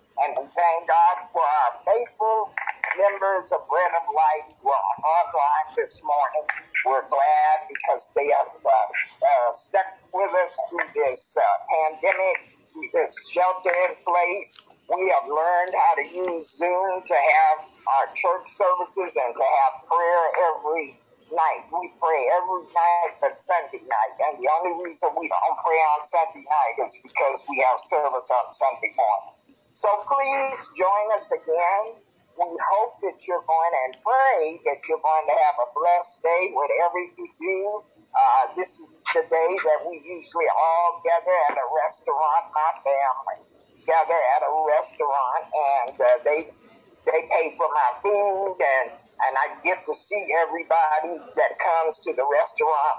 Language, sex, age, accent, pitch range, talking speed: English, male, 50-69, American, 165-260 Hz, 160 wpm